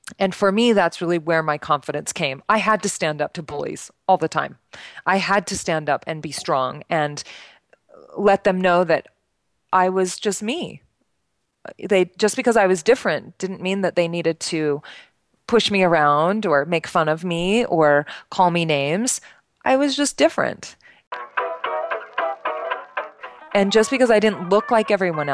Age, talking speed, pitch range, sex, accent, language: 30-49, 170 wpm, 165-215 Hz, female, American, English